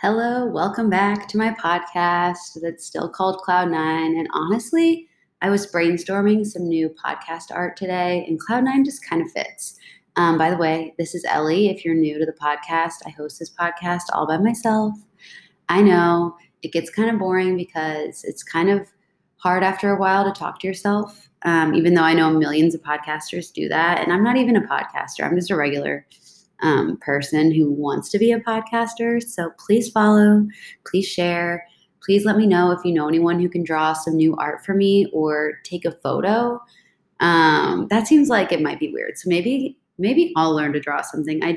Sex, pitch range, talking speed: female, 160-205 Hz, 195 wpm